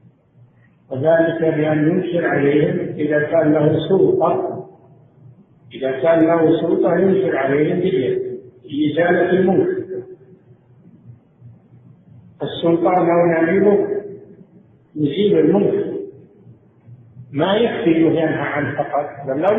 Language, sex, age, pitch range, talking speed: Arabic, male, 50-69, 140-185 Hz, 85 wpm